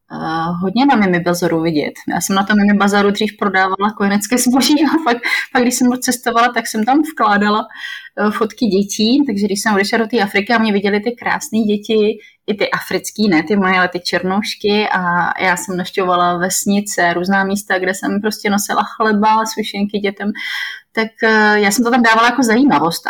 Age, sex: 30-49, female